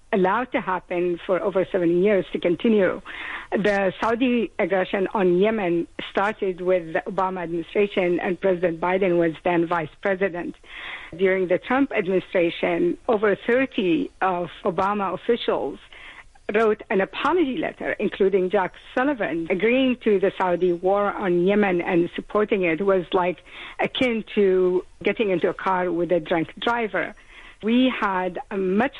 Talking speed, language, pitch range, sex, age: 140 wpm, English, 185-220 Hz, female, 60-79